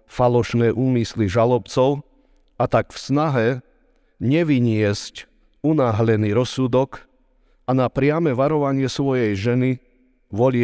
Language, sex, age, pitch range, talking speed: Slovak, male, 50-69, 110-135 Hz, 95 wpm